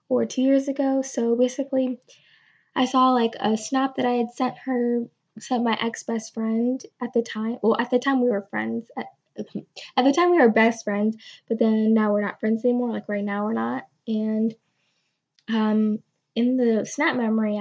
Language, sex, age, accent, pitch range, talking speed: English, female, 10-29, American, 220-250 Hz, 190 wpm